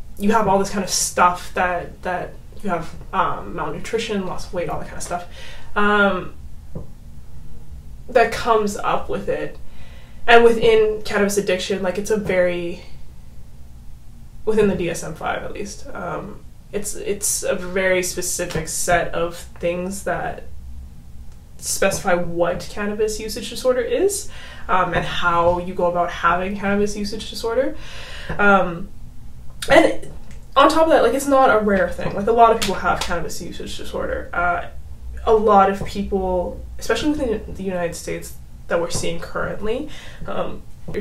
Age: 20-39